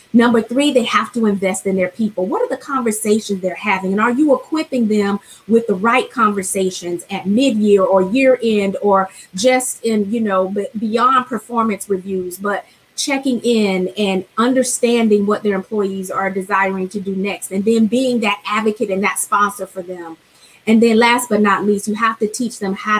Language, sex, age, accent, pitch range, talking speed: English, female, 30-49, American, 190-230 Hz, 185 wpm